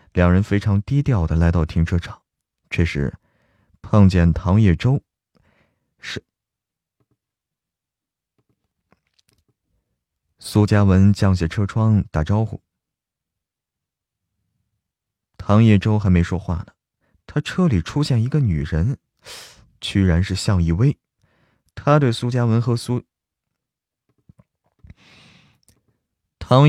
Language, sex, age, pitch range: Chinese, male, 20-39, 90-115 Hz